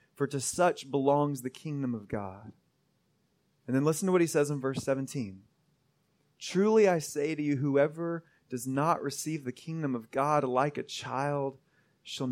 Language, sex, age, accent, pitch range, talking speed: English, male, 30-49, American, 140-200 Hz, 170 wpm